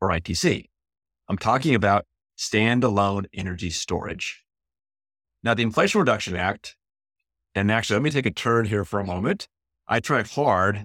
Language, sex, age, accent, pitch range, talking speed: English, male, 30-49, American, 90-110 Hz, 150 wpm